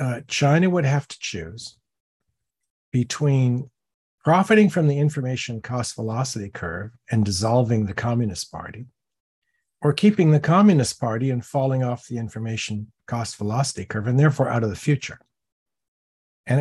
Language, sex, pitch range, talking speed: English, male, 110-145 Hz, 135 wpm